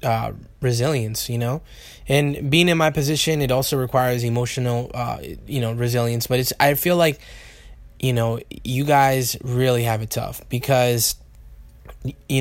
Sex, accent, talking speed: male, American, 155 wpm